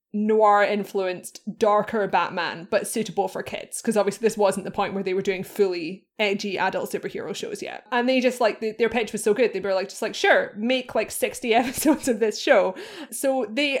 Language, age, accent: English, 20-39, British